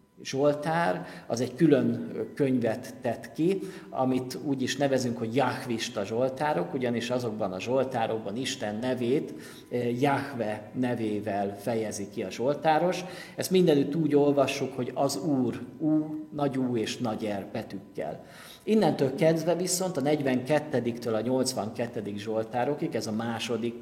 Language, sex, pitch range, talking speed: Hungarian, male, 115-145 Hz, 130 wpm